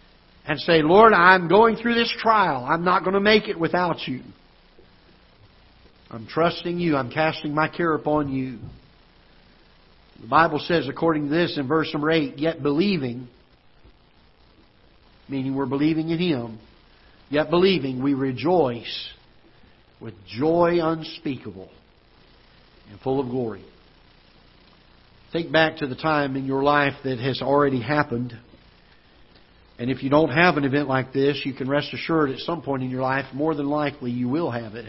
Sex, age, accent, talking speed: male, 60-79, American, 155 wpm